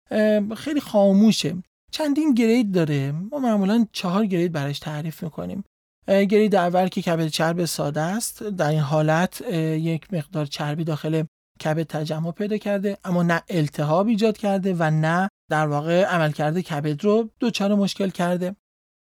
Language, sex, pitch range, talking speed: Persian, male, 160-205 Hz, 145 wpm